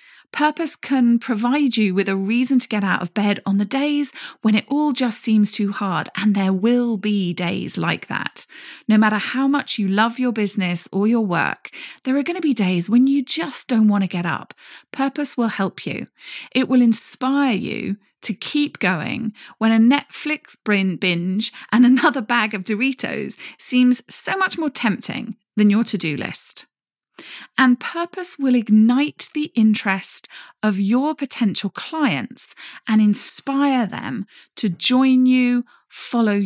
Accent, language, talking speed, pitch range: British, English, 165 wpm, 205-270 Hz